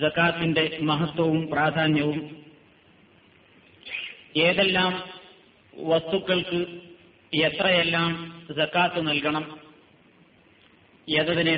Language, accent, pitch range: Malayalam, native, 155-200 Hz